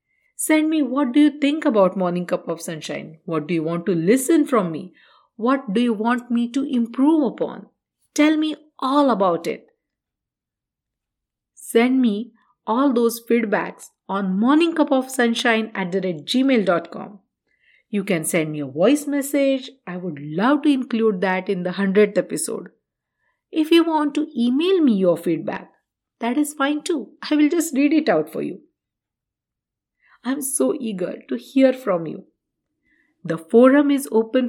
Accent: Indian